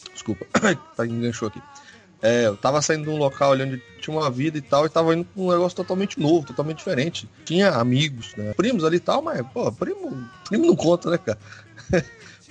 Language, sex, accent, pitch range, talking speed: Portuguese, male, Brazilian, 120-175 Hz, 210 wpm